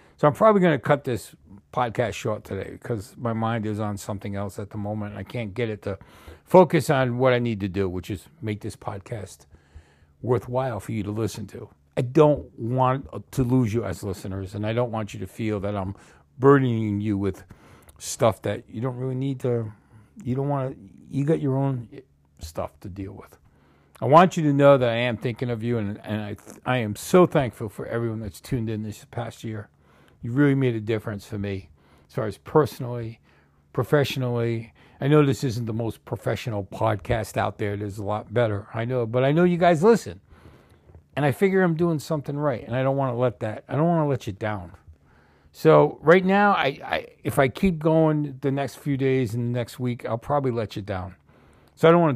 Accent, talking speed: American, 220 wpm